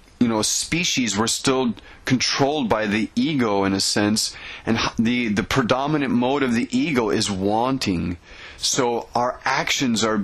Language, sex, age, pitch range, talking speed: English, male, 30-49, 110-135 Hz, 150 wpm